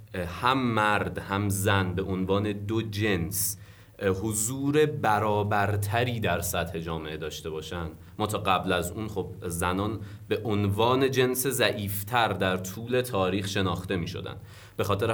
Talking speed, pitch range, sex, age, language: 135 wpm, 95-115 Hz, male, 30-49, Persian